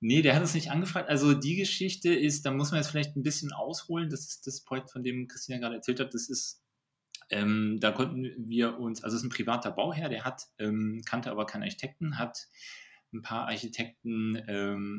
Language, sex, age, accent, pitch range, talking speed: English, male, 30-49, German, 110-135 Hz, 210 wpm